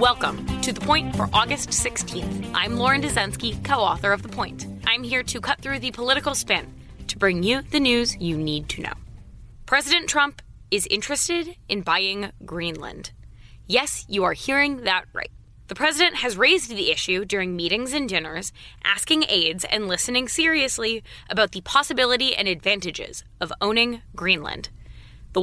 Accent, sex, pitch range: American, female, 190-270 Hz